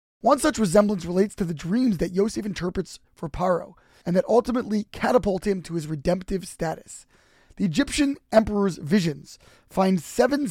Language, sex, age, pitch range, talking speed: English, male, 20-39, 180-220 Hz, 155 wpm